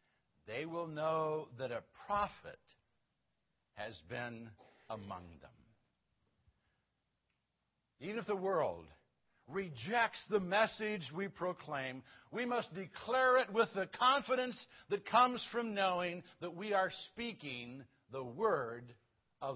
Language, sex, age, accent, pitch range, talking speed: English, male, 60-79, American, 135-210 Hz, 115 wpm